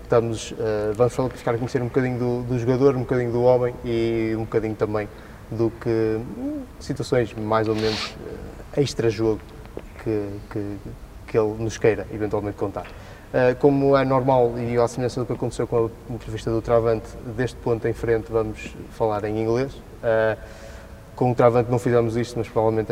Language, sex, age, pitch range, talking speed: Portuguese, male, 20-39, 110-125 Hz, 160 wpm